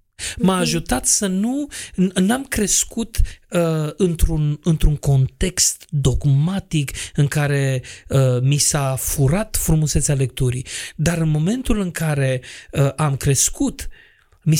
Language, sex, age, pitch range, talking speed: Romanian, male, 30-49, 135-170 Hz, 115 wpm